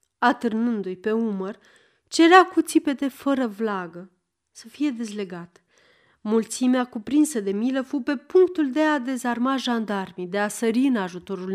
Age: 30-49